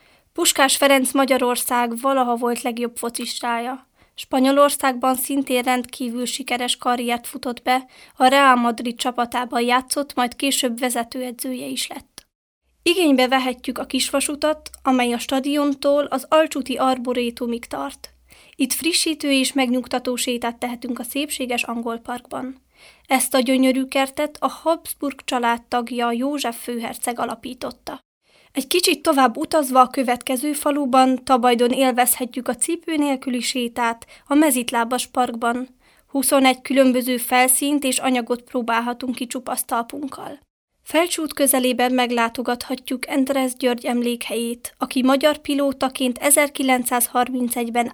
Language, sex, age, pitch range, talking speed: Czech, female, 20-39, 245-275 Hz, 110 wpm